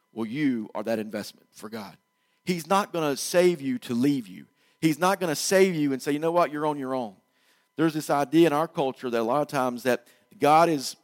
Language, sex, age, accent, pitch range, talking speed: English, male, 40-59, American, 120-160 Hz, 245 wpm